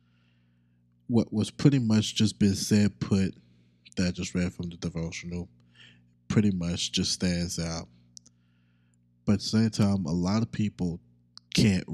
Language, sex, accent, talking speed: English, male, American, 150 wpm